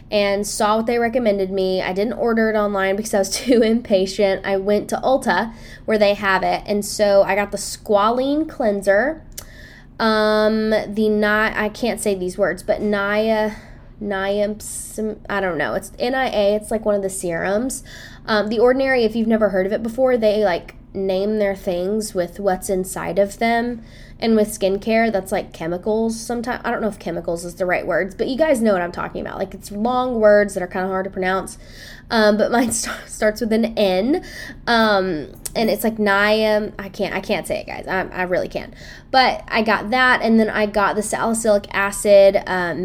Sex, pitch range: female, 195-220 Hz